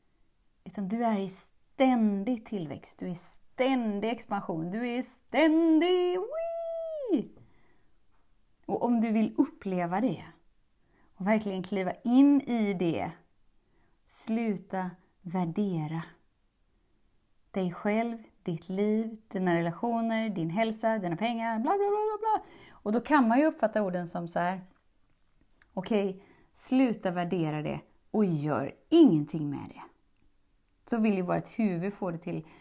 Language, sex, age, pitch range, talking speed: Swedish, female, 30-49, 180-235 Hz, 120 wpm